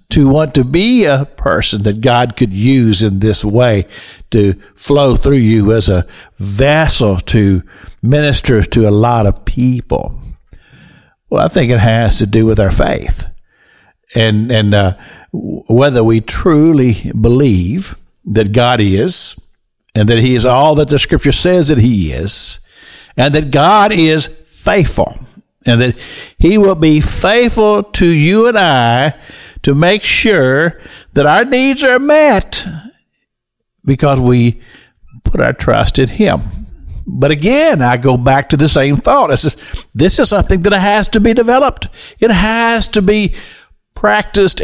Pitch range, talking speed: 110-175 Hz, 150 wpm